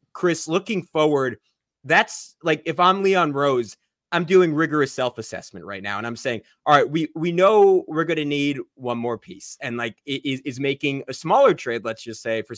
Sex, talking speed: male, 200 wpm